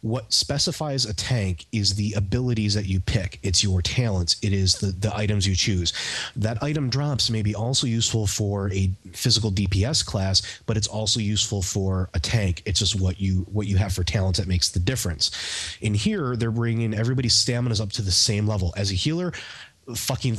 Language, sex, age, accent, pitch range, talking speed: English, male, 30-49, American, 95-115 Hz, 195 wpm